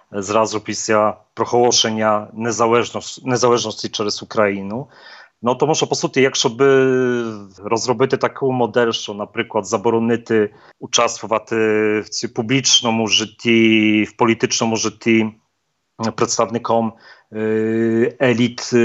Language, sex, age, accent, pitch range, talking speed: Ukrainian, male, 40-59, Polish, 110-125 Hz, 90 wpm